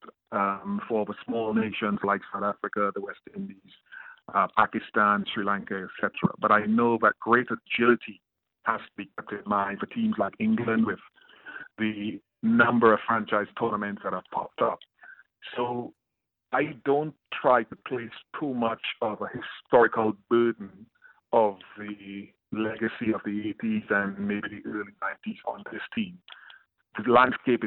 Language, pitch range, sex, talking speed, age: English, 105-125 Hz, male, 155 wpm, 50-69